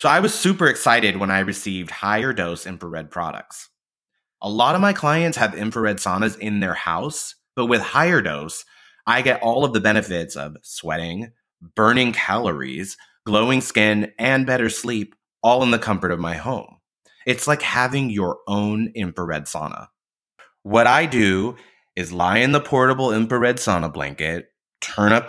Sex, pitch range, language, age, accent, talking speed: male, 90-120 Hz, English, 30-49, American, 165 wpm